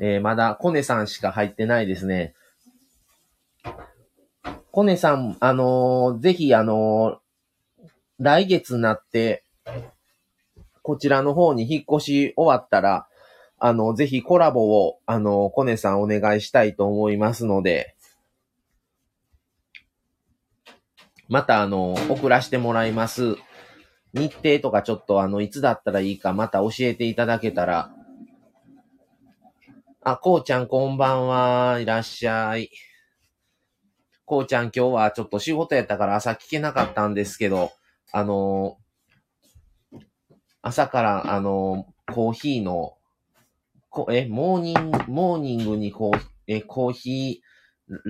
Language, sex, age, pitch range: Japanese, male, 30-49, 105-140 Hz